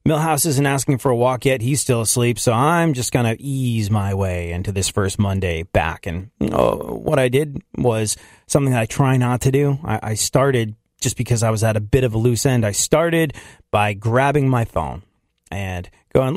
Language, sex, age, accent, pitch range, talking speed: English, male, 30-49, American, 85-130 Hz, 215 wpm